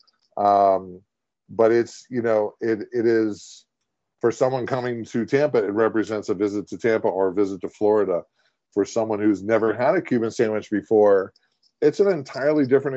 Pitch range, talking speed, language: 105-120 Hz, 170 wpm, English